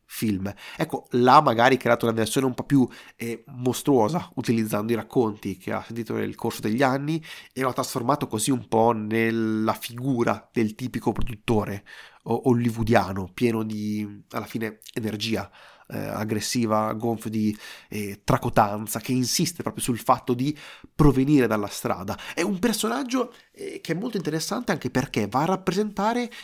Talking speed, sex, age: 150 wpm, male, 30-49